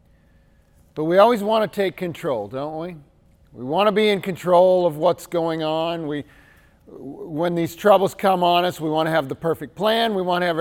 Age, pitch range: 40-59, 145-195 Hz